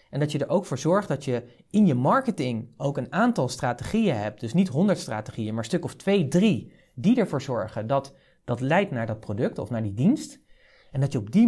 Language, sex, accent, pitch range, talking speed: Dutch, male, Dutch, 115-175 Hz, 235 wpm